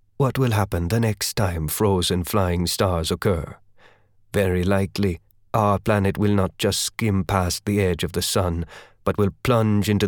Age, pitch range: 30-49, 95-115 Hz